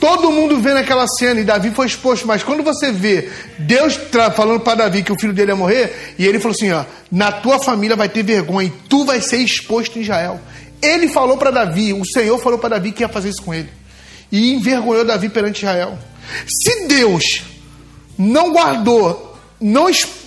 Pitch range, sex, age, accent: 205-280 Hz, male, 40-59, Brazilian